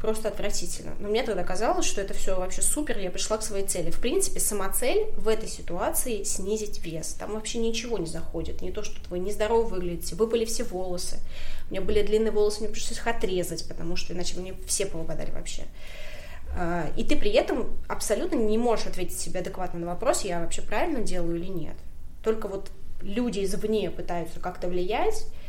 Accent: native